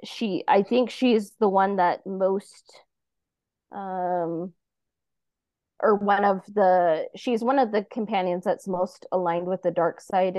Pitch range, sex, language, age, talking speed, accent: 185-225 Hz, female, English, 20-39, 145 wpm, American